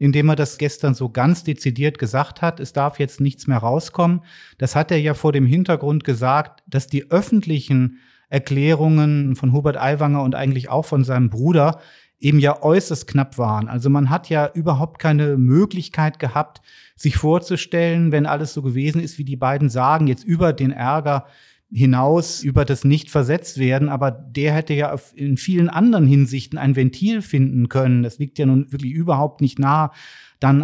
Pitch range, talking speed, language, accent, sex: 135-165 Hz, 175 wpm, German, German, male